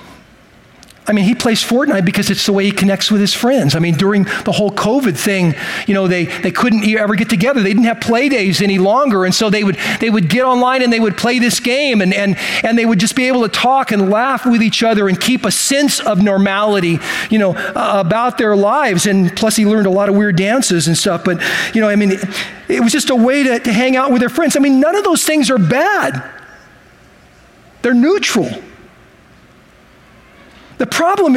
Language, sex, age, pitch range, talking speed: English, male, 40-59, 200-280 Hz, 225 wpm